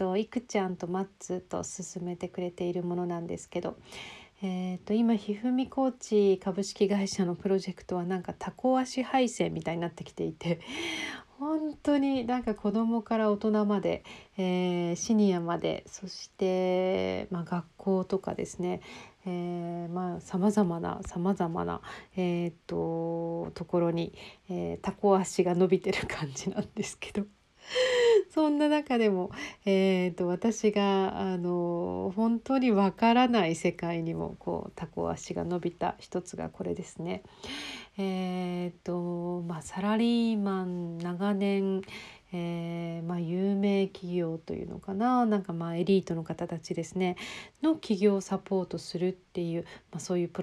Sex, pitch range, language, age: female, 175-205 Hz, Japanese, 40-59